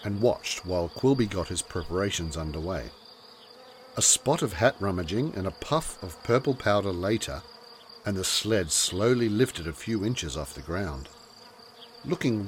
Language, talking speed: English, 155 wpm